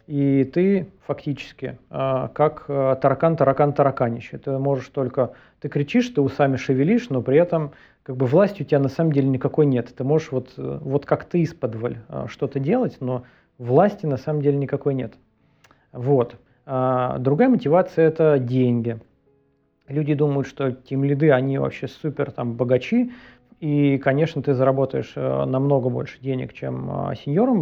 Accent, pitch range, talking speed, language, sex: native, 130-150 Hz, 140 wpm, Russian, male